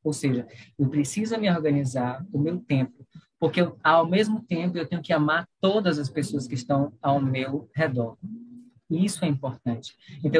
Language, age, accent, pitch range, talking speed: Portuguese, 20-39, Brazilian, 140-180 Hz, 175 wpm